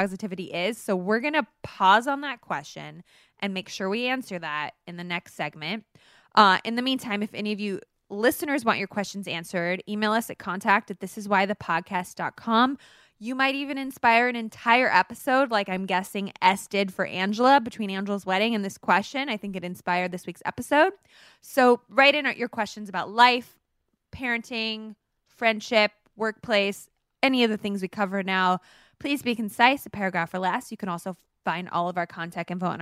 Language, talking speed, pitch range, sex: English, 185 wpm, 185-230 Hz, female